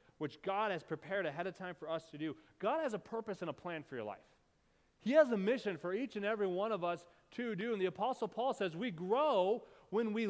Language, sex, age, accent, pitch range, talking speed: English, male, 30-49, American, 185-235 Hz, 250 wpm